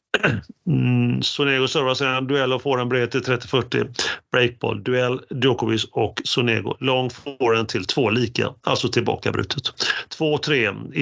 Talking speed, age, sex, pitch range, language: 130 wpm, 40-59, male, 115-135 Hz, Swedish